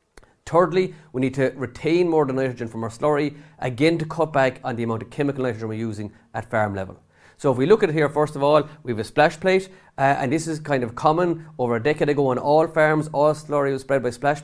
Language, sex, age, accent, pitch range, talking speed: English, male, 30-49, Irish, 115-150 Hz, 260 wpm